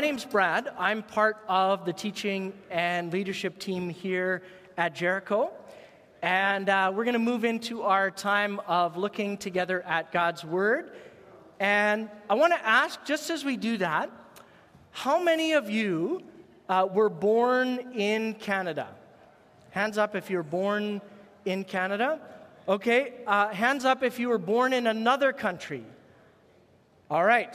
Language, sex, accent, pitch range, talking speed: English, male, American, 190-245 Hz, 150 wpm